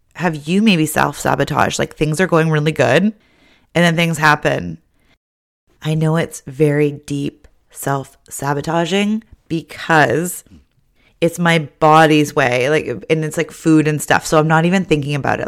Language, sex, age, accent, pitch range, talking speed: English, female, 30-49, American, 150-180 Hz, 150 wpm